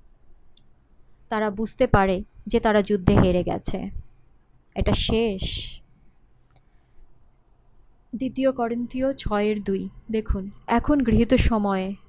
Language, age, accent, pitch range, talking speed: Bengali, 30-49, native, 205-255 Hz, 90 wpm